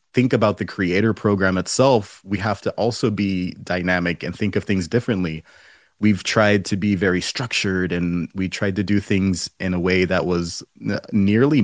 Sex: male